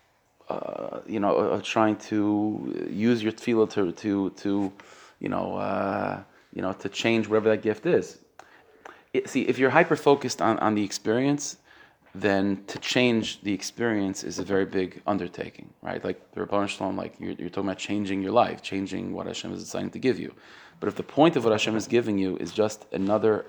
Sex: male